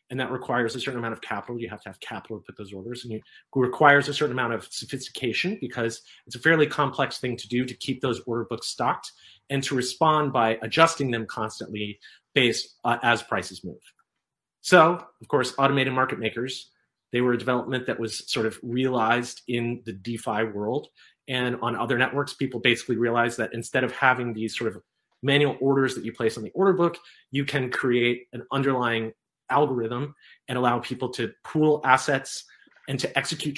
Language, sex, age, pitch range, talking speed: English, male, 30-49, 115-135 Hz, 195 wpm